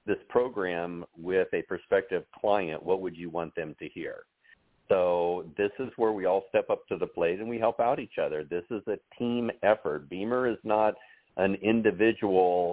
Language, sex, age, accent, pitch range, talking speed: English, male, 50-69, American, 85-110 Hz, 190 wpm